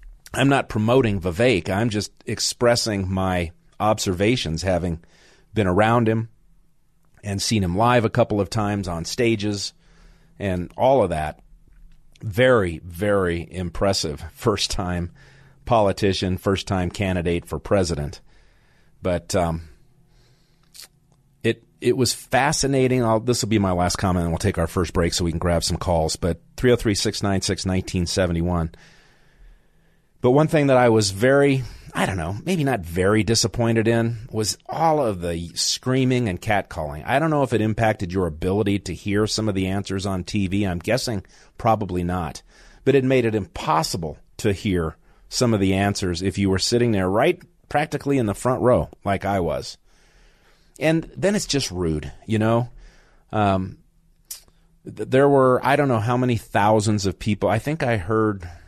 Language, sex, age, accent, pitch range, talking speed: English, male, 40-59, American, 90-125 Hz, 155 wpm